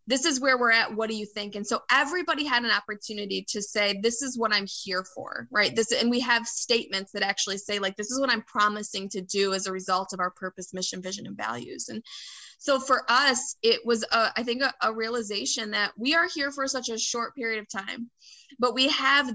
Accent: American